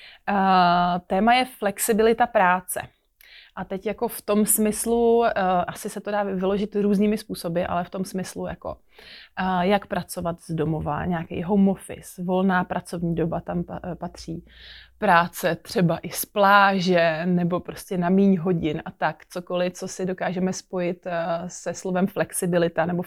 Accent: native